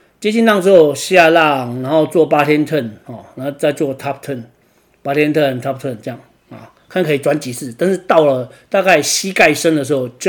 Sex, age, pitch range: male, 40-59, 135-185 Hz